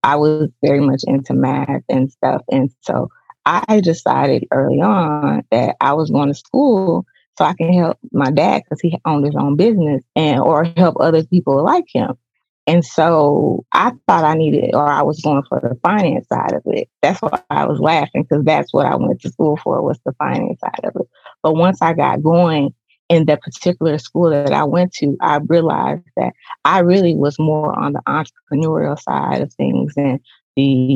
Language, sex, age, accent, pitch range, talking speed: English, female, 20-39, American, 140-175 Hz, 200 wpm